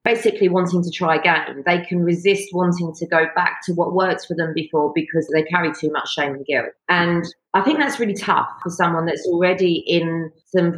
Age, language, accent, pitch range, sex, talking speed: 40-59, English, British, 160-185 Hz, female, 210 wpm